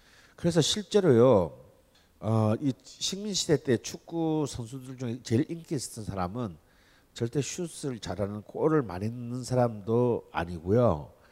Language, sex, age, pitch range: Korean, male, 50-69, 105-150 Hz